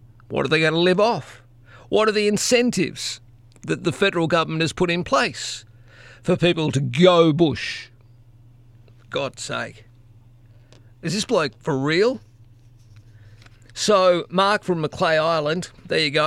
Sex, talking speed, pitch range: male, 150 wpm, 120-165 Hz